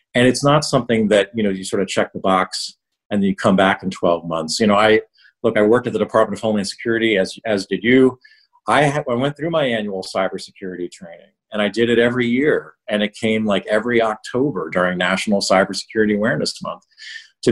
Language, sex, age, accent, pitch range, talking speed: English, male, 40-59, American, 100-130 Hz, 220 wpm